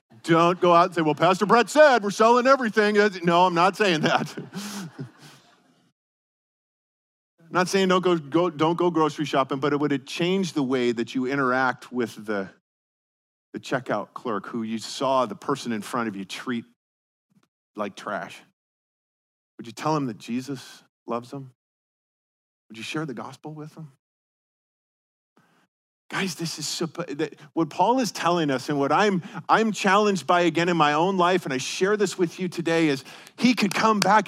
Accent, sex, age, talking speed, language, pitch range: American, male, 40-59, 175 wpm, English, 135-205 Hz